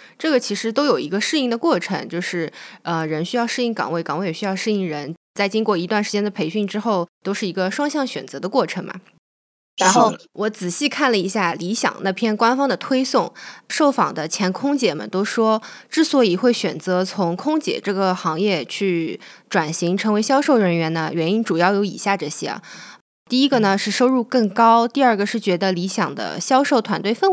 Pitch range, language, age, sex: 180-240 Hz, Chinese, 20-39, female